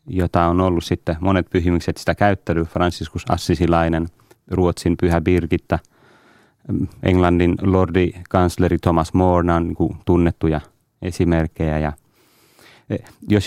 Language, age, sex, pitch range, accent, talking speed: Finnish, 30-49, male, 85-105 Hz, native, 105 wpm